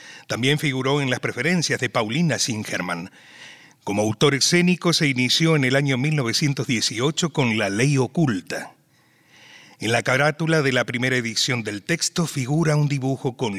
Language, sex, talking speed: Spanish, male, 150 wpm